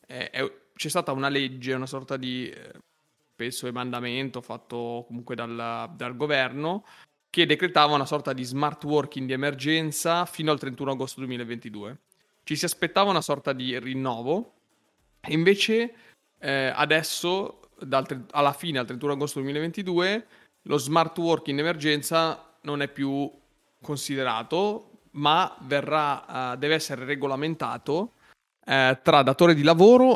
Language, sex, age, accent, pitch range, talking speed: Italian, male, 30-49, native, 130-160 Hz, 130 wpm